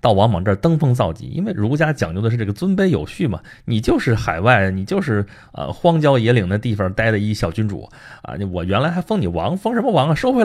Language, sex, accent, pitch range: Chinese, male, native, 100-150 Hz